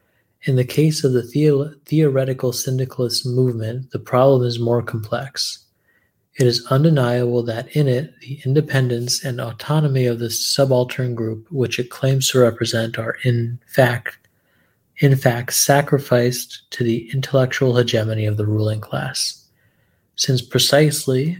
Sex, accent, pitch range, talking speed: male, American, 115-135 Hz, 135 wpm